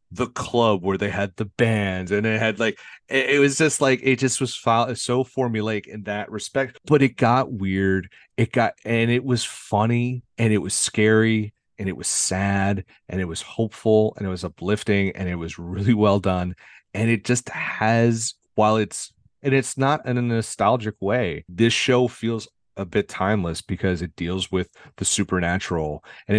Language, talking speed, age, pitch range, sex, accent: English, 185 wpm, 30-49, 90-120 Hz, male, American